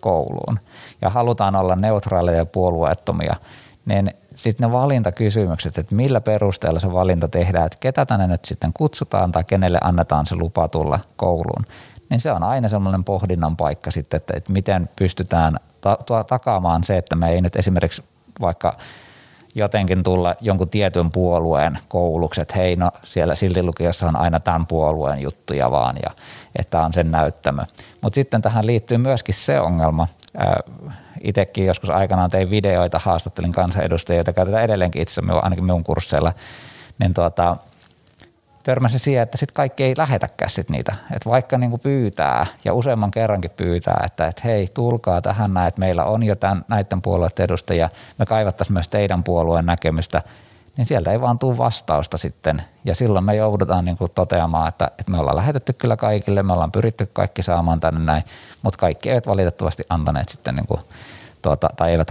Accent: native